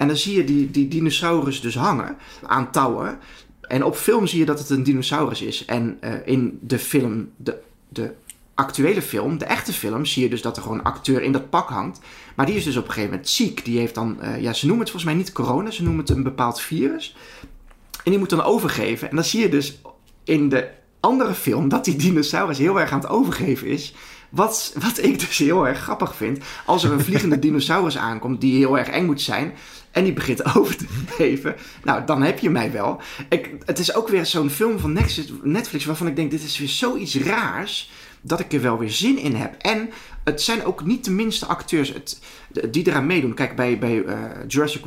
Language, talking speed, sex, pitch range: Dutch, 225 wpm, male, 125-165 Hz